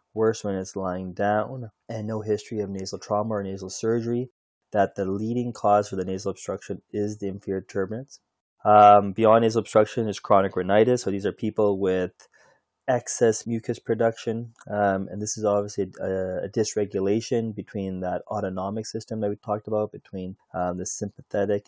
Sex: male